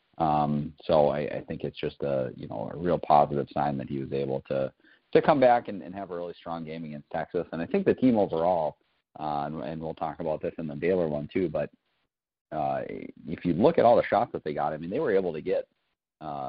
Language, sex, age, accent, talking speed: English, male, 40-59, American, 250 wpm